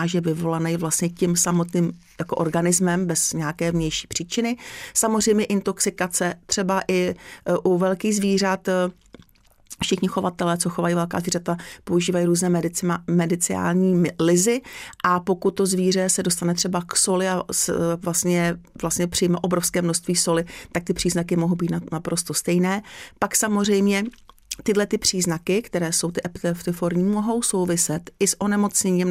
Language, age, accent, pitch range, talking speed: Czech, 40-59, native, 170-190 Hz, 140 wpm